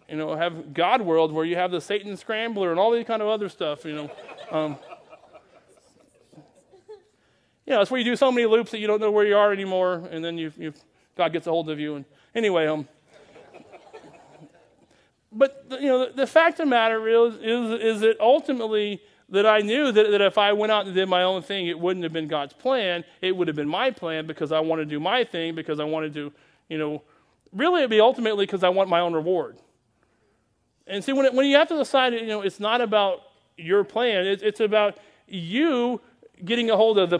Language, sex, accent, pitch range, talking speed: English, male, American, 180-240 Hz, 230 wpm